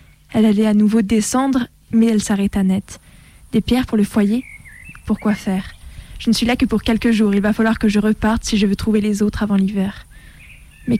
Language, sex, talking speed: French, female, 215 wpm